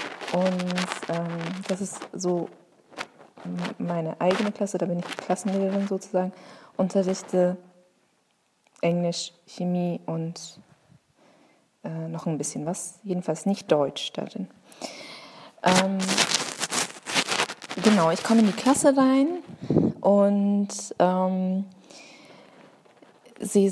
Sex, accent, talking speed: female, German, 95 wpm